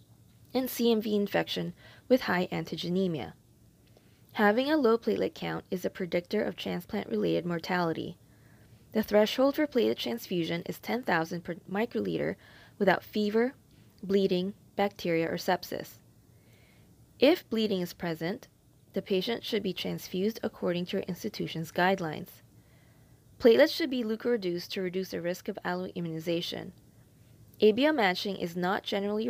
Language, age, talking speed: English, 20-39, 125 wpm